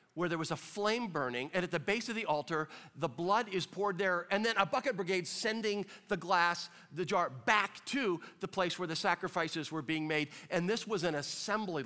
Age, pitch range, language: 50-69, 150-195 Hz, English